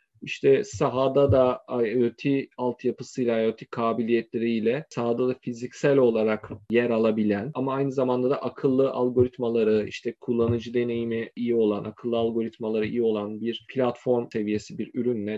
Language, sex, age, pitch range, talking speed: Turkish, male, 40-59, 115-135 Hz, 130 wpm